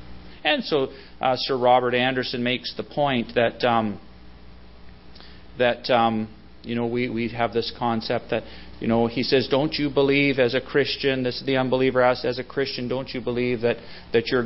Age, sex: 40-59, male